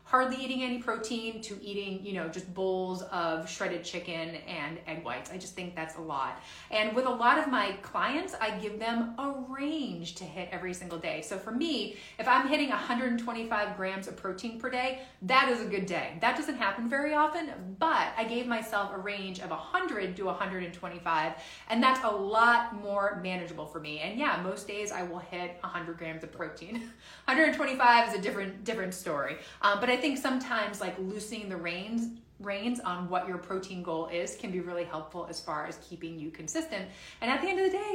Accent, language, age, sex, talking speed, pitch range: American, English, 30-49, female, 205 wpm, 180-245 Hz